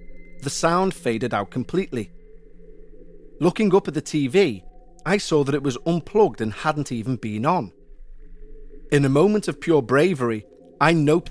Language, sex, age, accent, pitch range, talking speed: English, male, 40-59, British, 125-175 Hz, 155 wpm